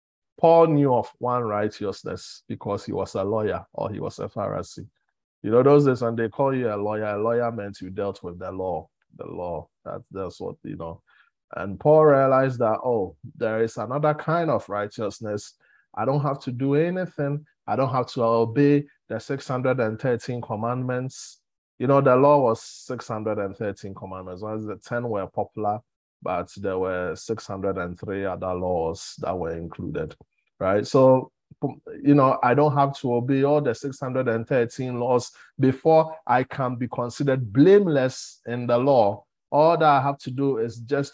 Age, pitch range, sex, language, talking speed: 20-39, 105-140 Hz, male, English, 170 wpm